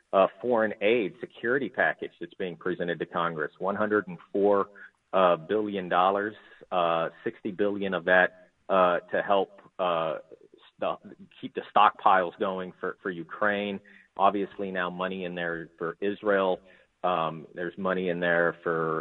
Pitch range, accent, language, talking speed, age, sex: 85-100 Hz, American, English, 140 wpm, 40-59, male